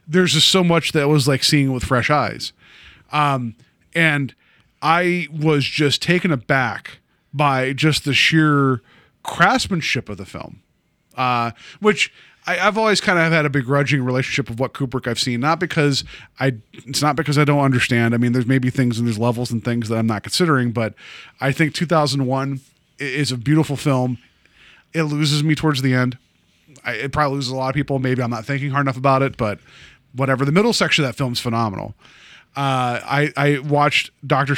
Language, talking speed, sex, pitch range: English, 195 wpm, male, 125-155 Hz